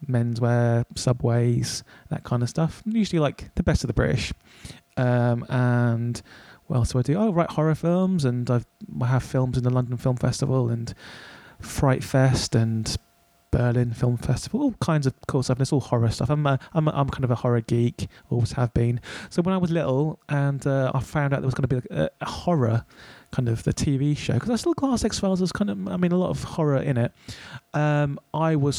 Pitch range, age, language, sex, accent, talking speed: 125-160 Hz, 30-49, English, male, British, 220 wpm